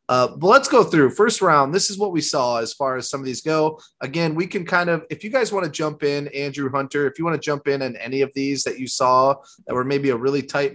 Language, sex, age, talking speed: English, male, 30-49, 290 wpm